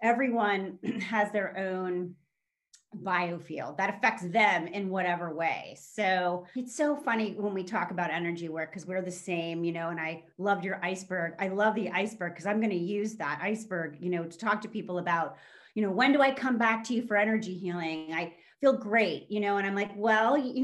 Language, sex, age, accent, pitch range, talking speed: English, female, 30-49, American, 175-220 Hz, 205 wpm